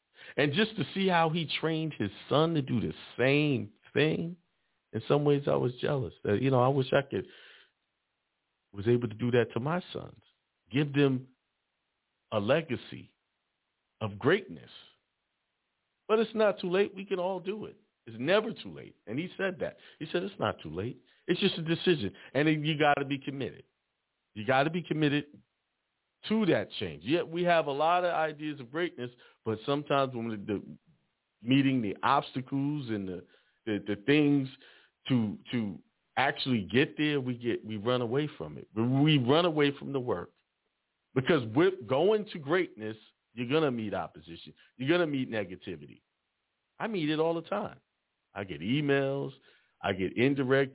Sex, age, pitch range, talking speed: male, 50-69, 120-165 Hz, 175 wpm